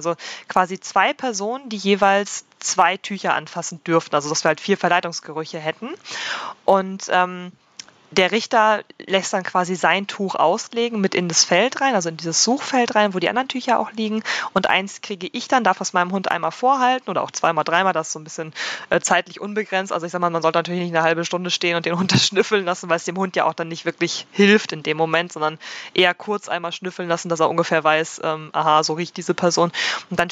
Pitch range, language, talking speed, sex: 165-200 Hz, German, 225 wpm, female